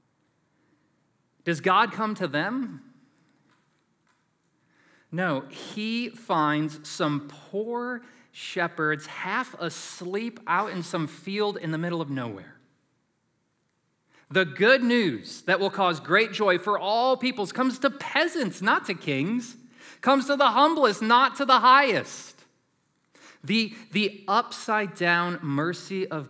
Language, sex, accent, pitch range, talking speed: English, male, American, 145-205 Hz, 120 wpm